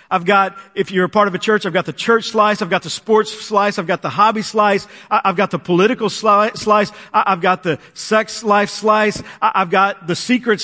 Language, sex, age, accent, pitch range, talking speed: English, male, 50-69, American, 185-220 Hz, 225 wpm